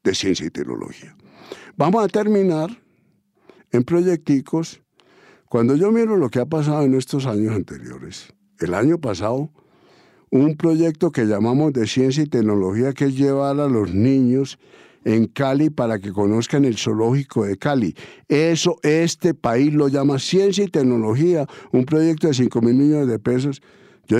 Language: English